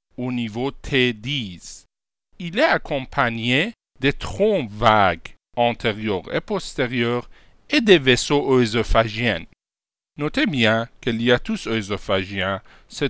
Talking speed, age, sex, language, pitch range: 100 wpm, 50-69, male, French, 115-165 Hz